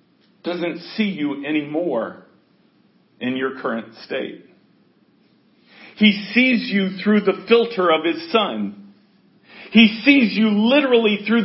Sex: male